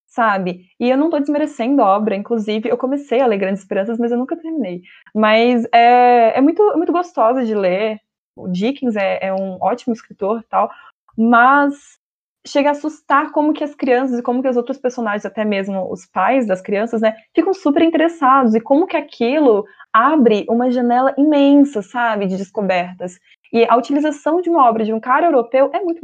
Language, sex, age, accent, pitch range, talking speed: Portuguese, female, 20-39, Brazilian, 215-285 Hz, 190 wpm